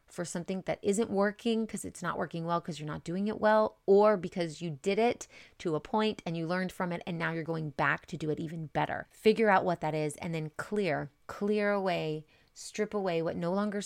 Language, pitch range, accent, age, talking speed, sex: English, 165-195 Hz, American, 30-49, 235 wpm, female